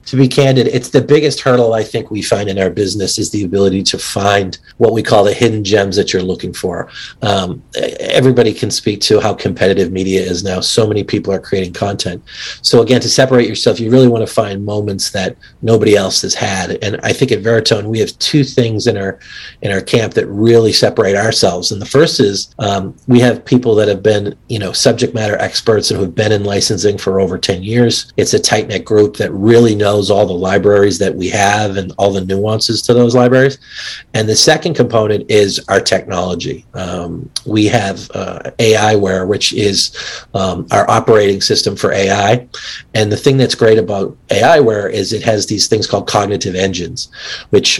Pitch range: 100-115 Hz